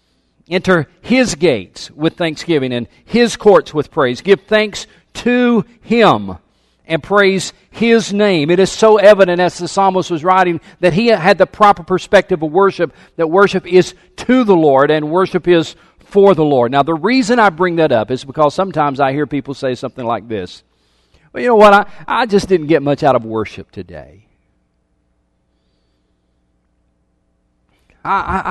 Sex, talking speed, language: male, 165 wpm, English